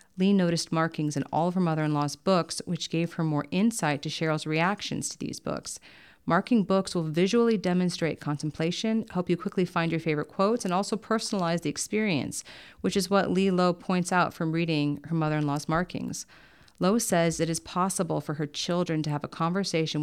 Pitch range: 150-175 Hz